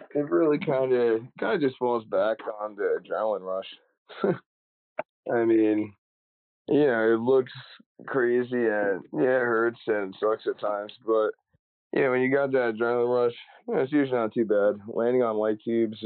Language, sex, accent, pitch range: English, male, American, 105-120 Hz